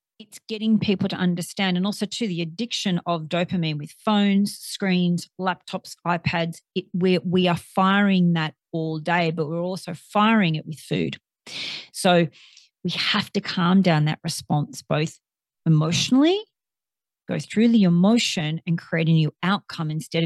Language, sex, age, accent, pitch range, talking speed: English, female, 40-59, Australian, 160-200 Hz, 150 wpm